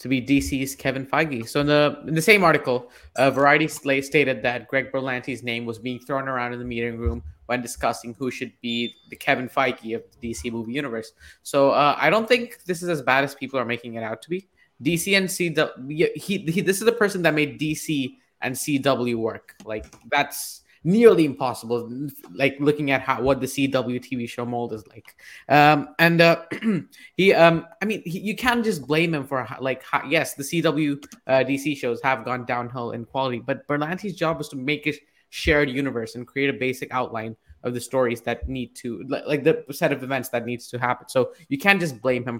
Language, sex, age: English, male, 20-39